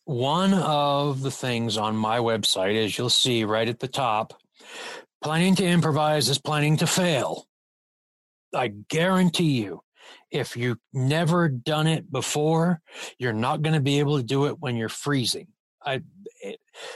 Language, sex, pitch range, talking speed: English, male, 125-160 Hz, 155 wpm